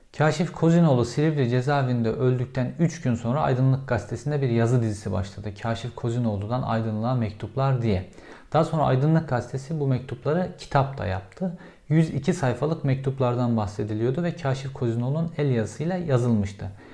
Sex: male